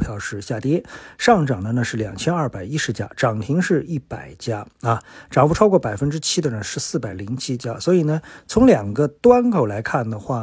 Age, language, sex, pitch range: 50-69, Chinese, male, 115-165 Hz